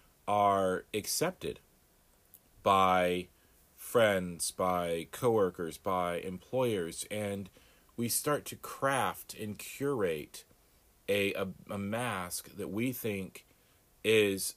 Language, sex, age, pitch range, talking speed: English, male, 40-59, 95-115 Hz, 95 wpm